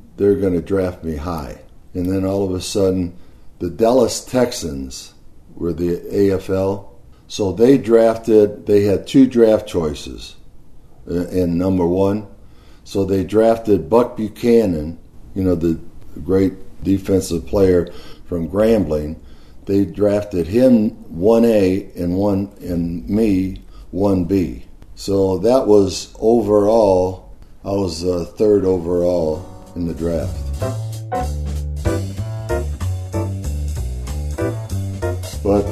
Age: 50-69